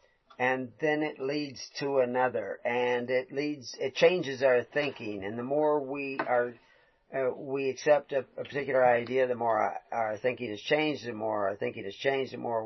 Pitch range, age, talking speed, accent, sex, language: 115-140 Hz, 40-59, 190 wpm, American, male, English